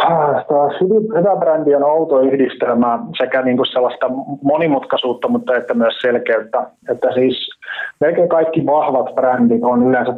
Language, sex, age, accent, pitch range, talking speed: Finnish, male, 30-49, native, 115-125 Hz, 140 wpm